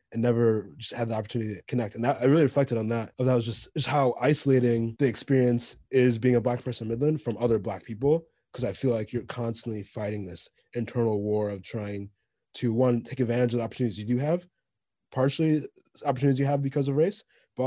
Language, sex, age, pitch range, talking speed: English, male, 20-39, 105-125 Hz, 215 wpm